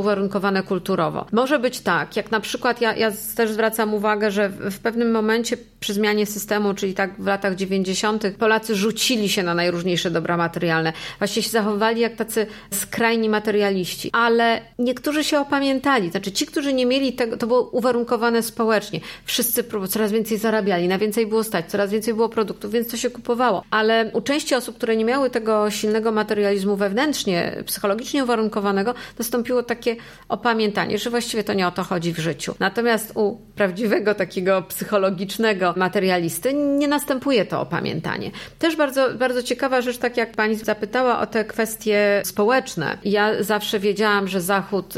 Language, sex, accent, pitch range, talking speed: Polish, female, native, 195-235 Hz, 165 wpm